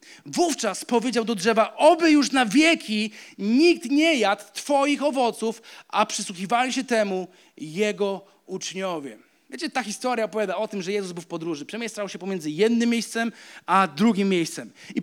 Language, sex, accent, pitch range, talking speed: Polish, male, native, 215-285 Hz, 155 wpm